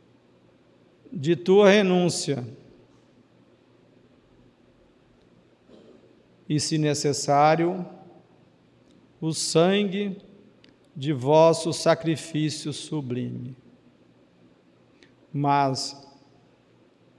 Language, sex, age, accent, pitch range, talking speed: Portuguese, male, 50-69, Brazilian, 125-175 Hz, 45 wpm